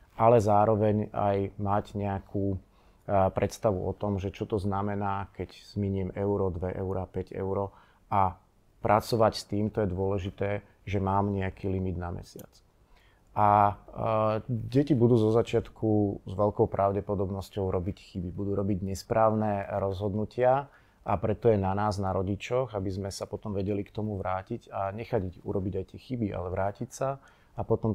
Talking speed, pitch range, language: 155 wpm, 95-110 Hz, Slovak